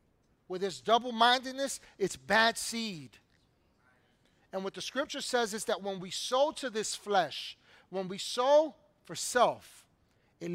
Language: English